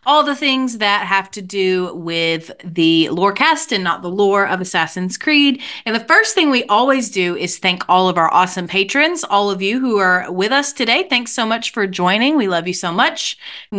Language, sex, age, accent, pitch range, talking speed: English, female, 30-49, American, 175-240 Hz, 220 wpm